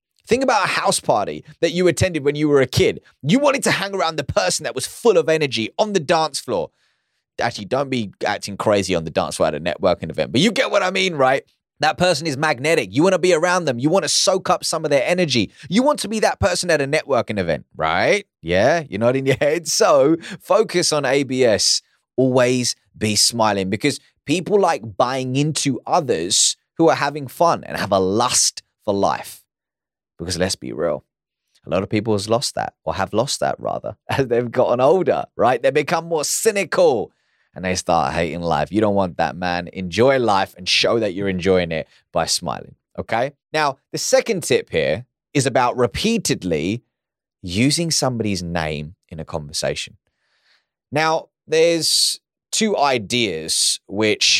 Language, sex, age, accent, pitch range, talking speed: English, male, 20-39, British, 105-170 Hz, 190 wpm